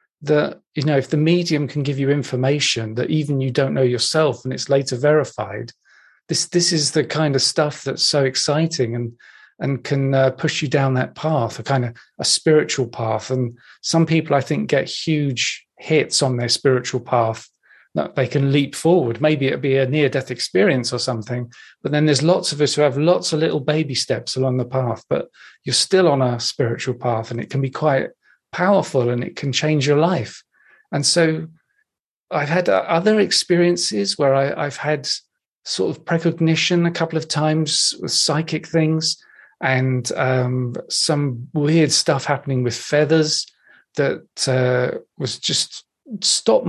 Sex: male